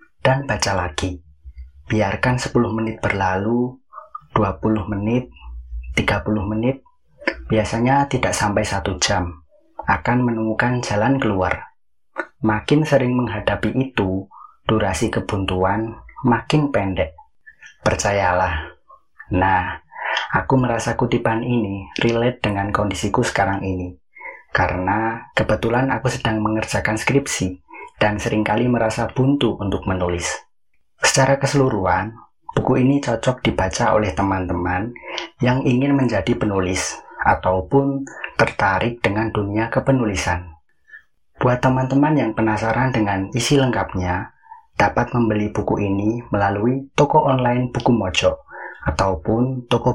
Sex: male